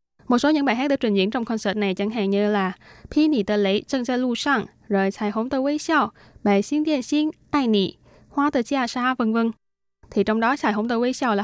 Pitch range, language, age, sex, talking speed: 205-255 Hz, Vietnamese, 10-29, female, 145 wpm